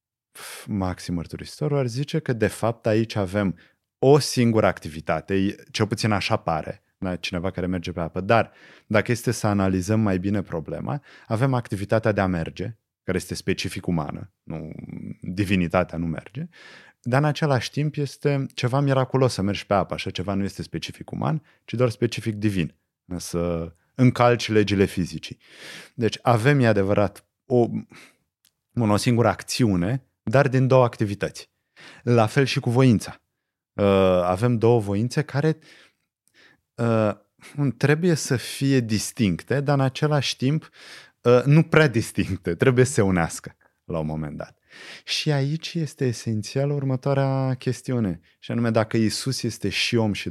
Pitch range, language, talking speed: 95-135 Hz, Romanian, 145 wpm